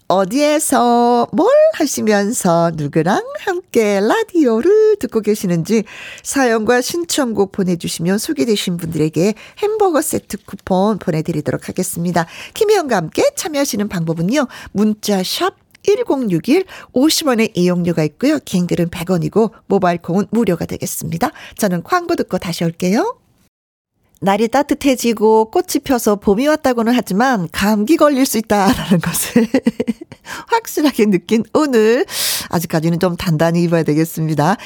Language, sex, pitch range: Korean, female, 180-300 Hz